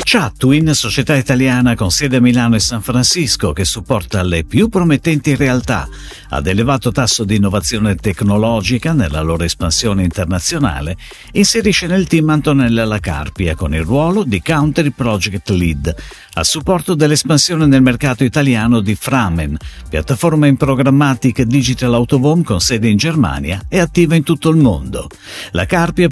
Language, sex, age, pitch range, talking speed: Italian, male, 50-69, 100-150 Hz, 145 wpm